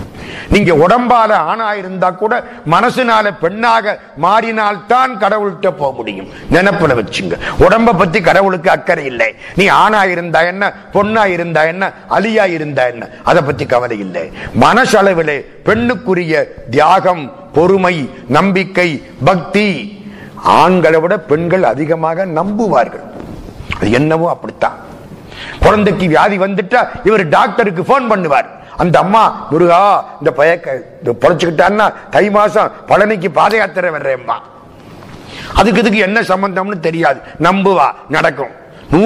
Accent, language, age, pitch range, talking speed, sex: native, Tamil, 50-69, 165-205 Hz, 45 wpm, male